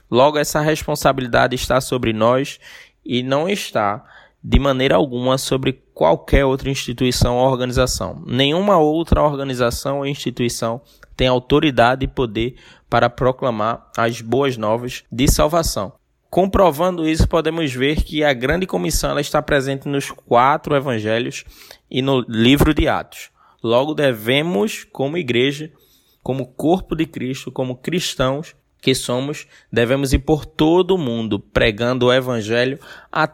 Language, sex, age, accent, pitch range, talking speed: Portuguese, male, 20-39, Brazilian, 120-150 Hz, 135 wpm